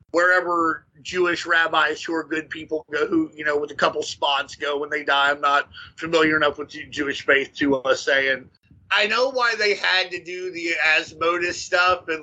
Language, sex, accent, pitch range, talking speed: English, male, American, 155-210 Hz, 205 wpm